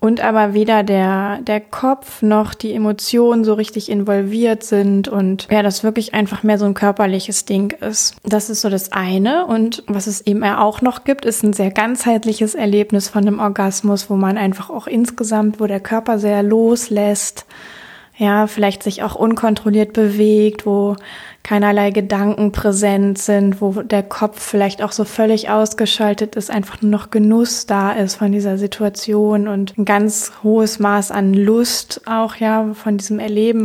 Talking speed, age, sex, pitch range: 170 wpm, 20-39, female, 200-215 Hz